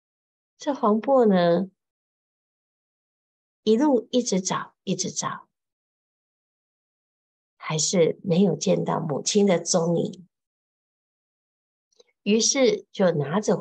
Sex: female